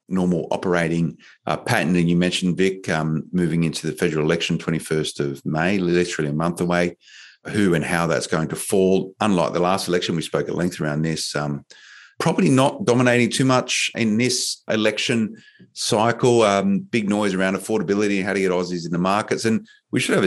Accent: Australian